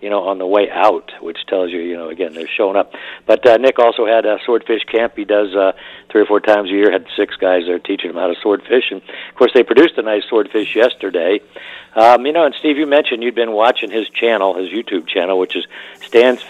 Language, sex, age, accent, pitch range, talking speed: English, male, 50-69, American, 100-140 Hz, 245 wpm